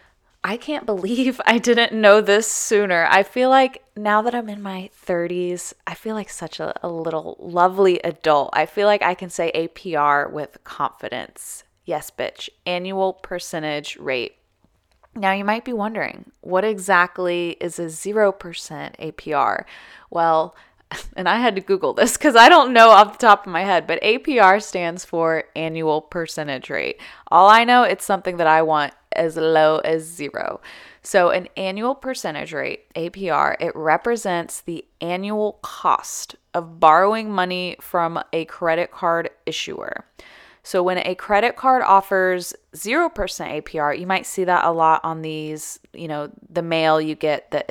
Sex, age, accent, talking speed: female, 20-39, American, 160 wpm